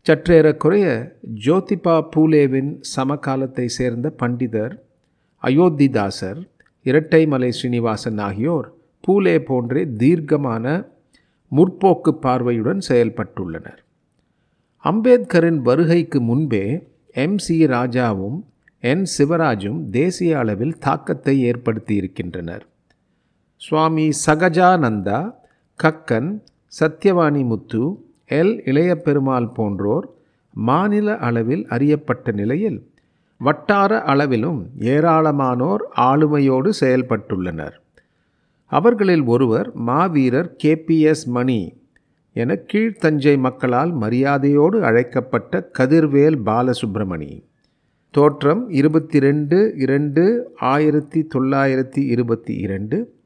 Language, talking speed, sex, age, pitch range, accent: Tamil, 70 wpm, male, 40-59, 120-160 Hz, native